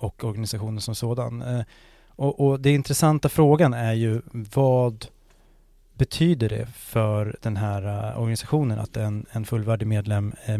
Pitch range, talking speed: 110-135 Hz, 135 wpm